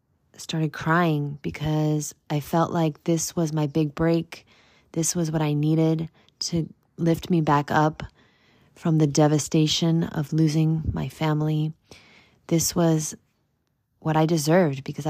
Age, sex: 20-39, female